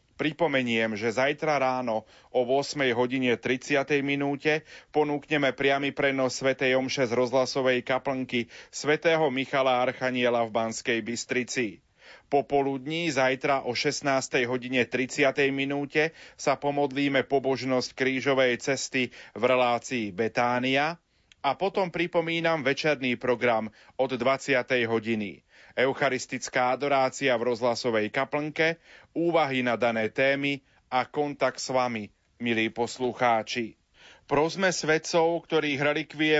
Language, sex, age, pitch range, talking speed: Slovak, male, 30-49, 120-140 Hz, 100 wpm